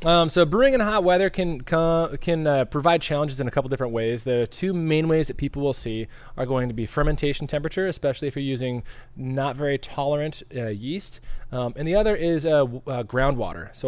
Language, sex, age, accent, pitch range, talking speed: English, male, 20-39, American, 120-150 Hz, 210 wpm